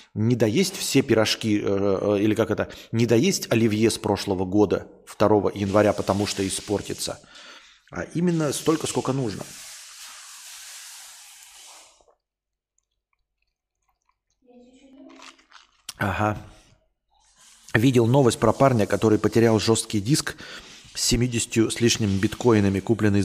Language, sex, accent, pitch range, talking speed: Russian, male, native, 100-125 Hz, 100 wpm